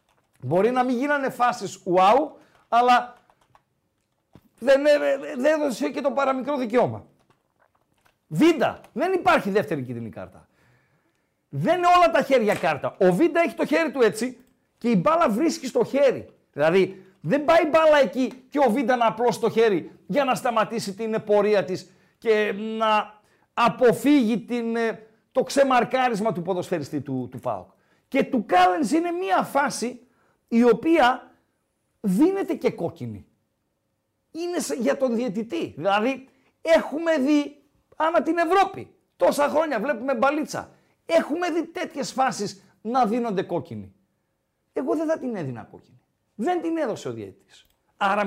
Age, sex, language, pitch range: 50-69, male, Greek, 205-290 Hz